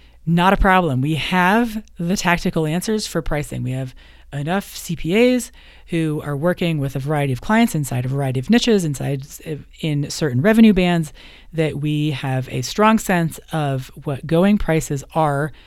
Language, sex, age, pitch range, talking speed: English, female, 30-49, 130-175 Hz, 165 wpm